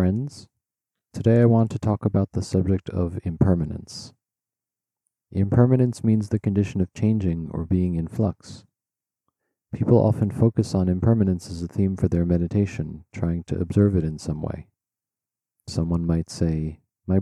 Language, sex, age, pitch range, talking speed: English, male, 40-59, 85-110 Hz, 150 wpm